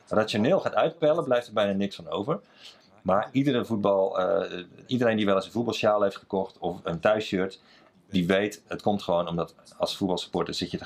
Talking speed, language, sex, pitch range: 195 wpm, Dutch, male, 95-125 Hz